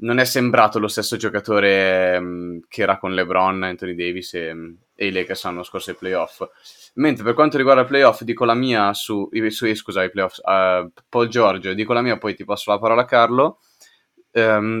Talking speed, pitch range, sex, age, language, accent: 200 wpm, 100-125 Hz, male, 20-39, Italian, native